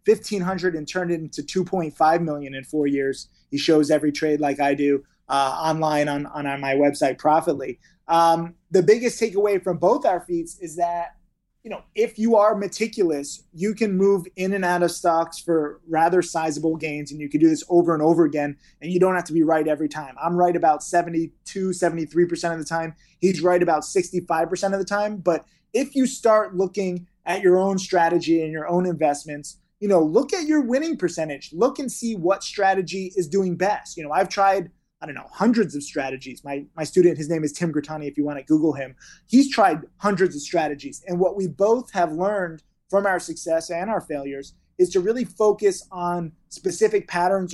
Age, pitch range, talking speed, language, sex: 20-39, 160-195 Hz, 205 wpm, English, male